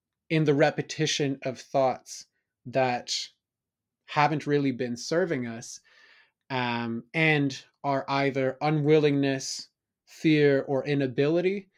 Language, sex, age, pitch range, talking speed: English, male, 20-39, 125-150 Hz, 95 wpm